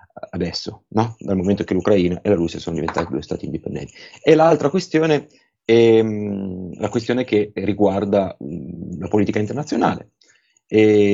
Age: 30-49